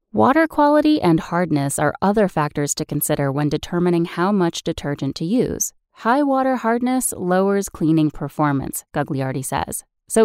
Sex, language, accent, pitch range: female, English, American, 150-210 Hz